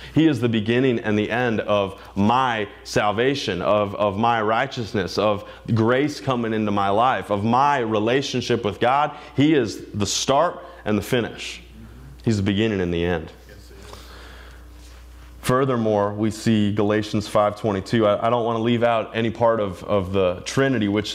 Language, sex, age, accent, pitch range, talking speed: English, male, 20-39, American, 105-125 Hz, 160 wpm